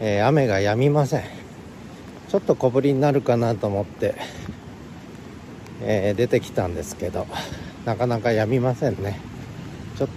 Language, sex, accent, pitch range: Japanese, male, native, 100-130 Hz